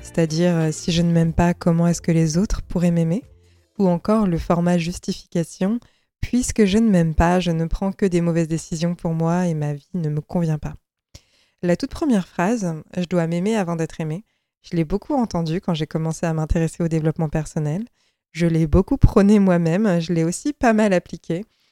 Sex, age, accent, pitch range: female, 20-39, French, 165-200 Hz